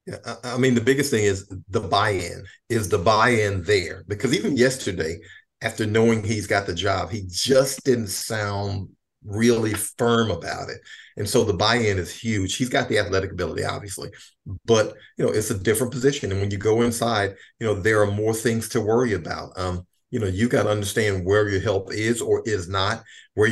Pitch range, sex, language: 100-120 Hz, male, English